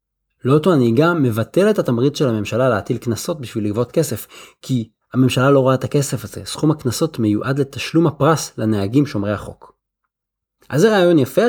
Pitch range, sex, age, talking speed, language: 110-150 Hz, male, 30-49, 165 wpm, Hebrew